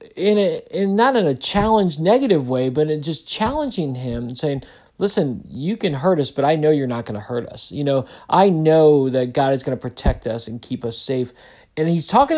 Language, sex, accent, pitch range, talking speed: English, male, American, 140-195 Hz, 235 wpm